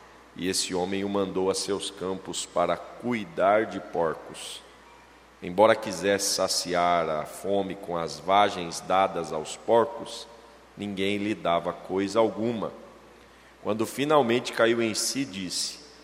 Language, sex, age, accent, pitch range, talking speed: Portuguese, male, 40-59, Brazilian, 95-120 Hz, 125 wpm